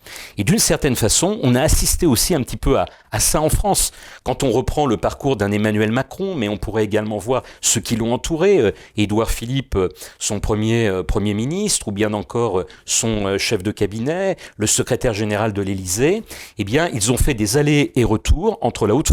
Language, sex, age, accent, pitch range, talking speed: French, male, 40-59, French, 105-125 Hz, 200 wpm